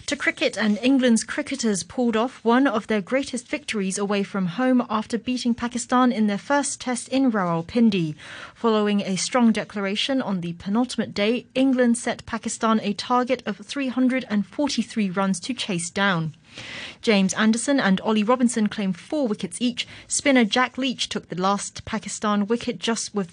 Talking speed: 160 wpm